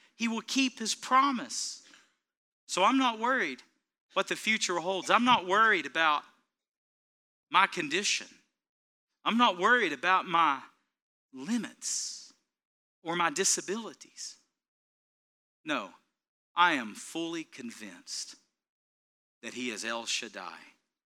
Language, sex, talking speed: English, male, 110 wpm